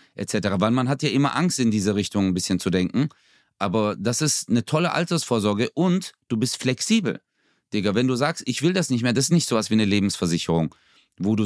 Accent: German